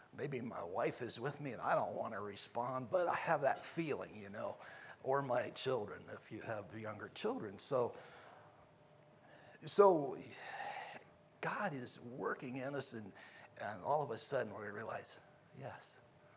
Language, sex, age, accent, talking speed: English, male, 60-79, American, 160 wpm